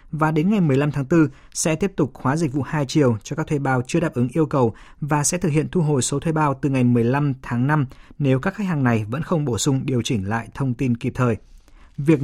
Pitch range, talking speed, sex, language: 130-165 Hz, 265 wpm, male, Vietnamese